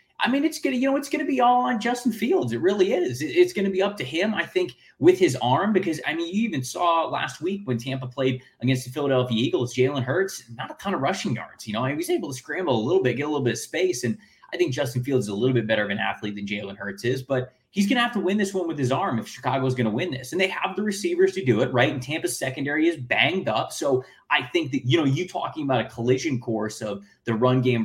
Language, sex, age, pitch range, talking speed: English, male, 20-39, 125-185 Hz, 280 wpm